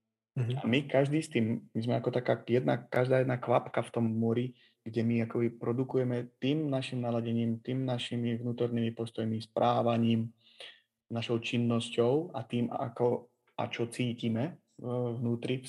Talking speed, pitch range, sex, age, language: 145 wpm, 115-125 Hz, male, 30-49, Slovak